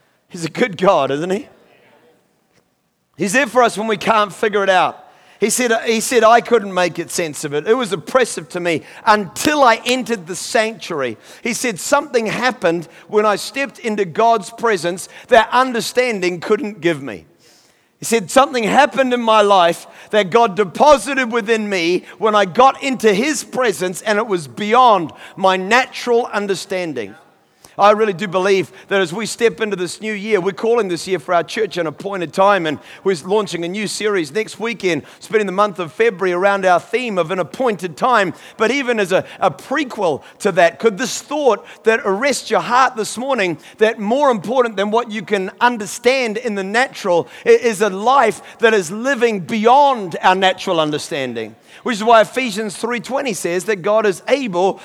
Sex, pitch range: male, 190-245 Hz